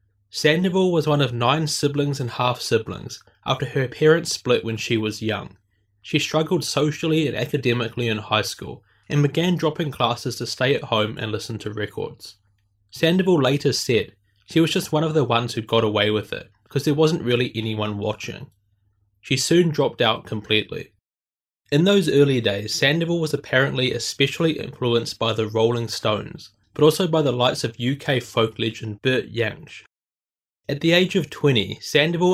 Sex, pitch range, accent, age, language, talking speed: male, 110-150 Hz, Australian, 20-39, English, 175 wpm